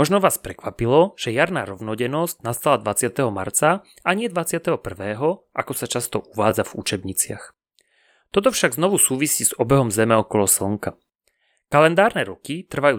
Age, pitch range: 30-49, 110-155 Hz